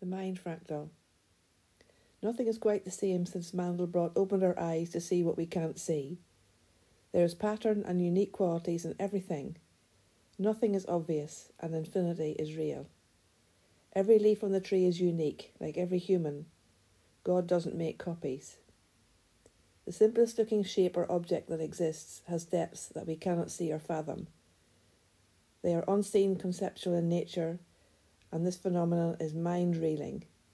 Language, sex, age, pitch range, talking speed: English, female, 60-79, 155-185 Hz, 145 wpm